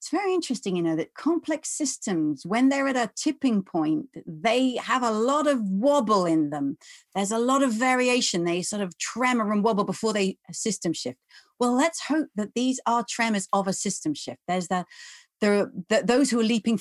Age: 40-59